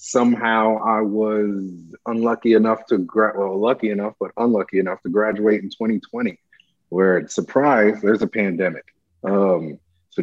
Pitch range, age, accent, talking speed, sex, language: 100-115 Hz, 30-49, American, 140 wpm, male, English